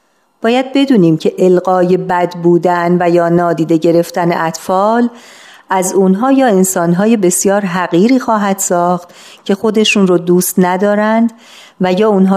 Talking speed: 130 wpm